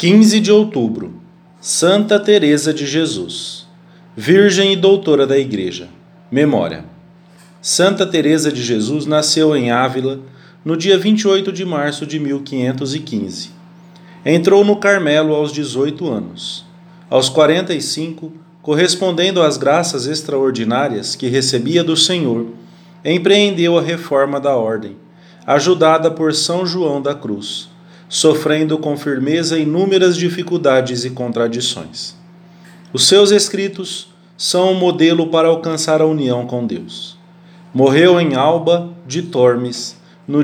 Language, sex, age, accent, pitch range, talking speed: English, male, 40-59, Brazilian, 145-175 Hz, 115 wpm